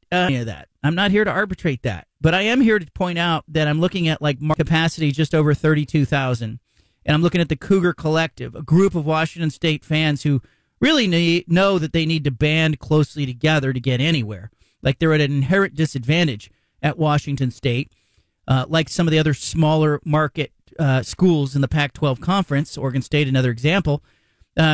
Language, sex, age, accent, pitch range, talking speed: English, male, 40-59, American, 140-170 Hz, 200 wpm